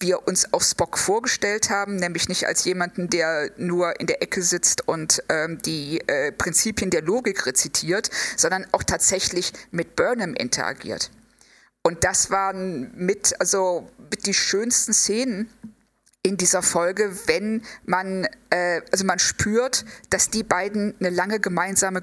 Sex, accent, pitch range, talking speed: female, German, 180-215 Hz, 145 wpm